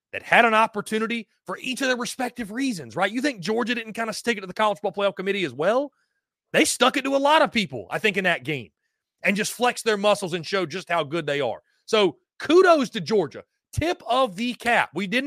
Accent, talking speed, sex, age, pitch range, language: American, 245 wpm, male, 30-49, 175-245 Hz, English